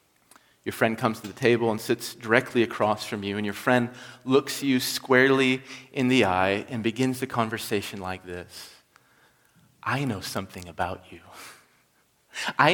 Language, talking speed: English, 155 wpm